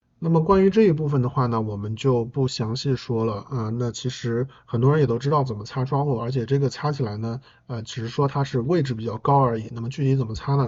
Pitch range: 120-140 Hz